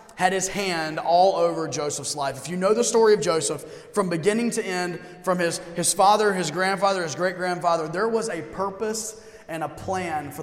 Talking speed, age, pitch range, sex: 195 wpm, 30-49, 170-210 Hz, male